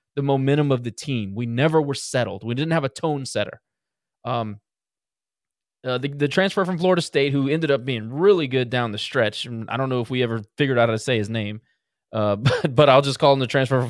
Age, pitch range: 20-39, 130-195 Hz